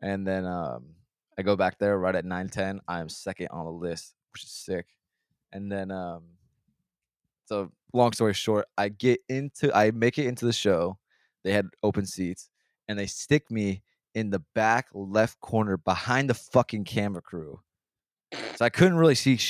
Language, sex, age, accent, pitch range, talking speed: English, male, 20-39, American, 95-115 Hz, 180 wpm